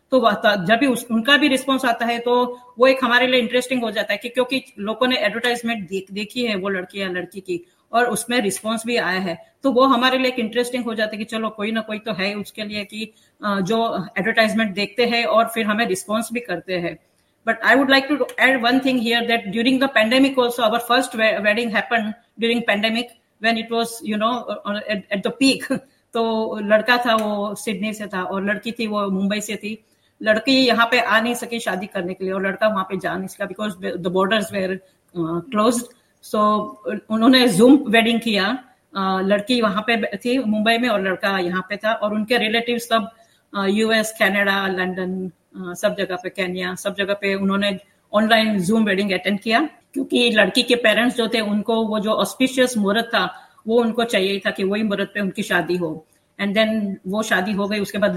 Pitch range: 200-235 Hz